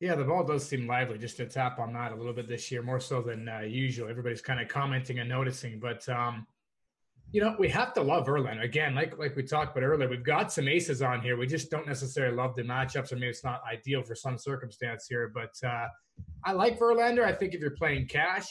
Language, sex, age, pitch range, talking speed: English, male, 20-39, 130-165 Hz, 245 wpm